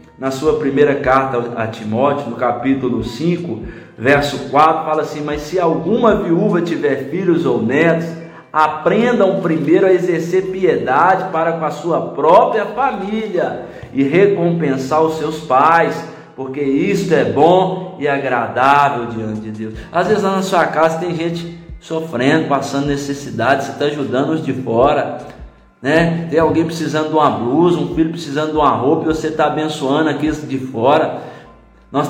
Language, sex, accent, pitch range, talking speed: Portuguese, male, Brazilian, 140-175 Hz, 155 wpm